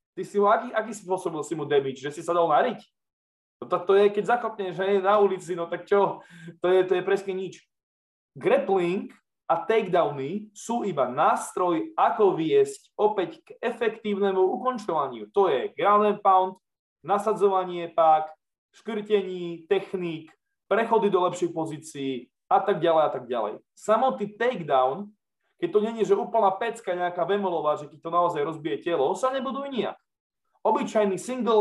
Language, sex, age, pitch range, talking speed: Slovak, male, 20-39, 175-225 Hz, 165 wpm